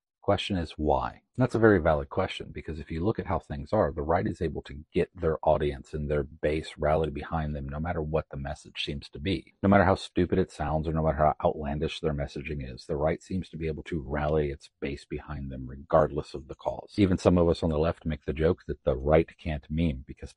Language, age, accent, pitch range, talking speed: English, 40-59, American, 75-90 Hz, 250 wpm